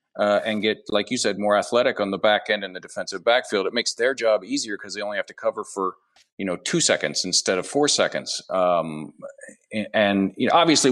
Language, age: English, 40-59